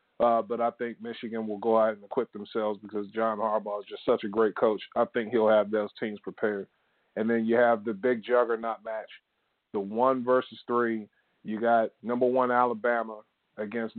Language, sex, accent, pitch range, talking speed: English, male, American, 115-125 Hz, 195 wpm